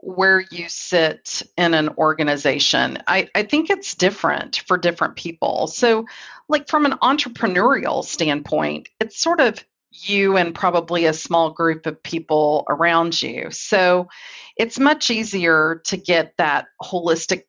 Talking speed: 140 wpm